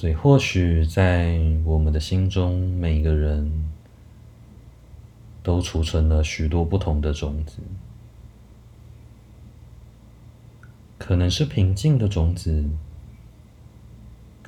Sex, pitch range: male, 80-110 Hz